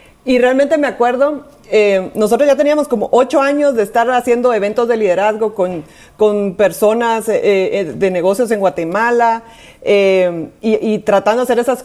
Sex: female